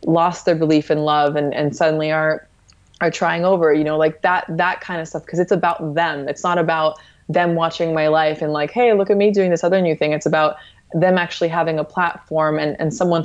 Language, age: English, 20-39